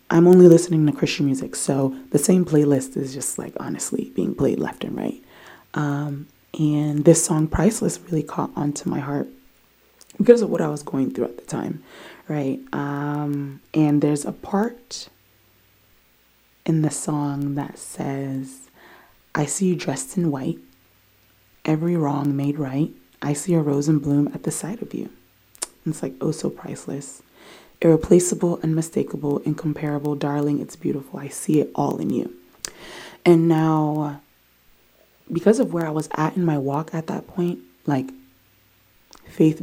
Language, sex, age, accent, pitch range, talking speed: English, female, 20-39, American, 140-170 Hz, 155 wpm